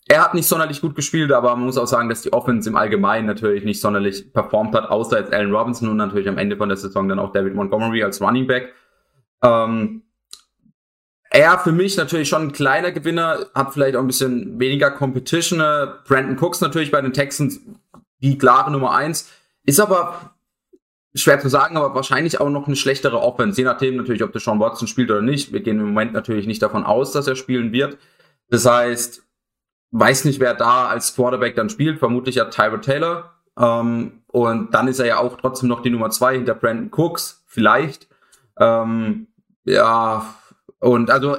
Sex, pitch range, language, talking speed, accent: male, 120-150 Hz, German, 195 wpm, German